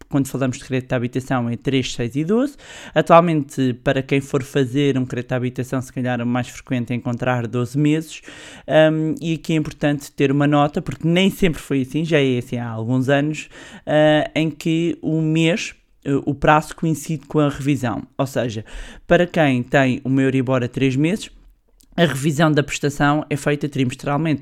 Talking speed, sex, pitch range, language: 185 wpm, male, 125-150 Hz, Portuguese